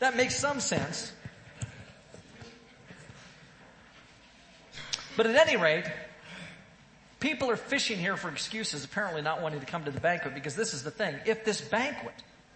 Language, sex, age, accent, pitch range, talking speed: English, male, 40-59, American, 160-235 Hz, 145 wpm